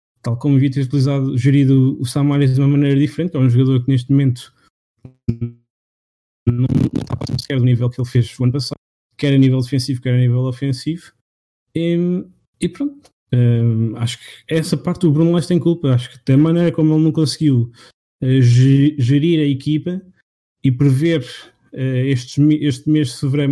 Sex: male